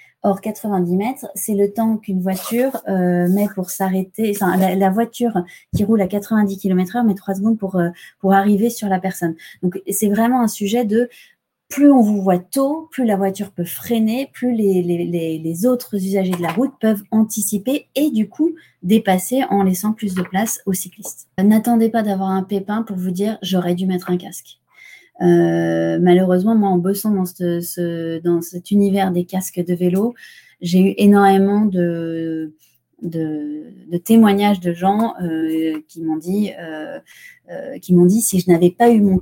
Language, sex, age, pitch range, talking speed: French, female, 30-49, 180-210 Hz, 190 wpm